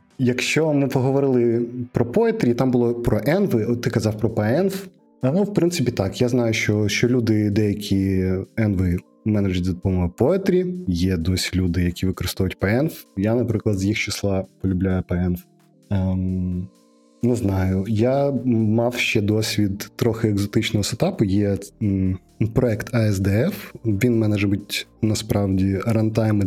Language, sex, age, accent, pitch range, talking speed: Ukrainian, male, 20-39, native, 100-125 Hz, 135 wpm